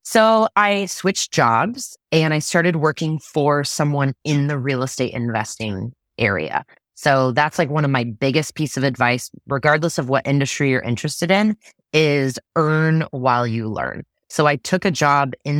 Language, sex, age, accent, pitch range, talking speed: English, female, 20-39, American, 130-165 Hz, 170 wpm